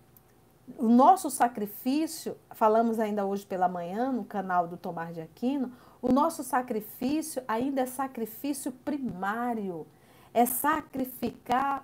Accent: Brazilian